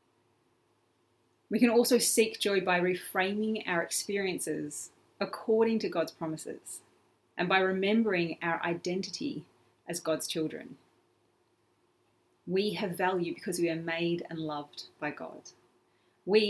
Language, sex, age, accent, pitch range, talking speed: English, female, 30-49, Australian, 170-215 Hz, 120 wpm